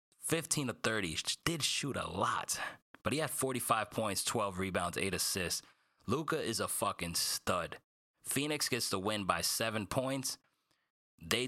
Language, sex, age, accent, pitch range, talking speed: English, male, 20-39, American, 100-130 Hz, 150 wpm